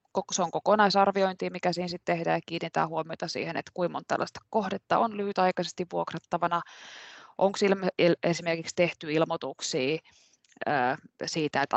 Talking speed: 145 wpm